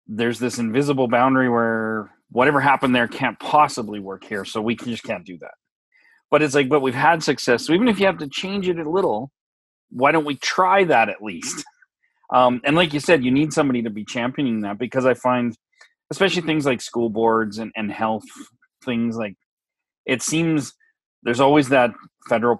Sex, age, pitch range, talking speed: male, 30-49, 115-145 Hz, 195 wpm